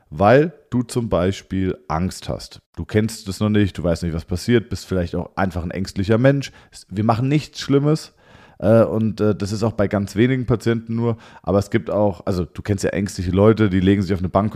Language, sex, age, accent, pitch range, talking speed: German, male, 40-59, German, 95-120 Hz, 215 wpm